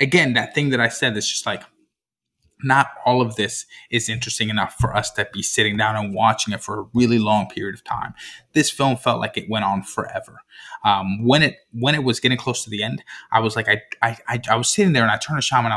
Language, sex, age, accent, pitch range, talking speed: English, male, 20-39, American, 110-155 Hz, 250 wpm